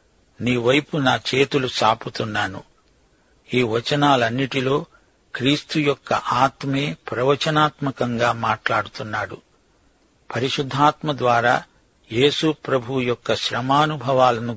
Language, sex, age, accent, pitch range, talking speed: Telugu, male, 60-79, native, 120-140 Hz, 70 wpm